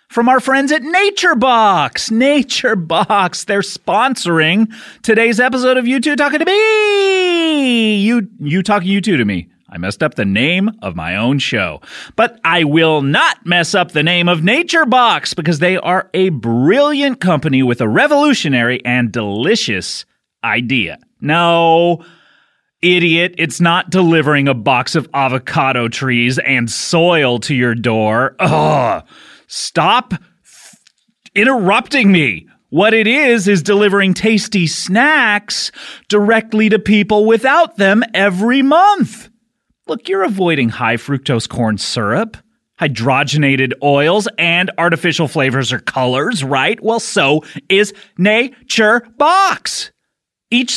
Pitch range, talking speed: 150-230 Hz, 130 wpm